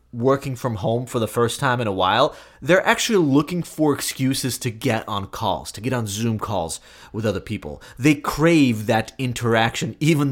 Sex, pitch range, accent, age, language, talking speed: male, 105-140 Hz, American, 30-49, English, 185 wpm